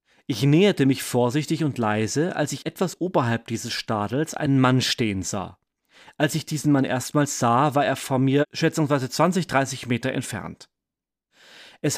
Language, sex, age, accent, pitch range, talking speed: German, male, 30-49, German, 120-150 Hz, 160 wpm